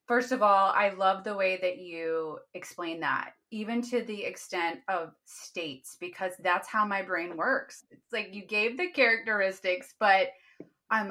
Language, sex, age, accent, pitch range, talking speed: English, female, 30-49, American, 170-220 Hz, 165 wpm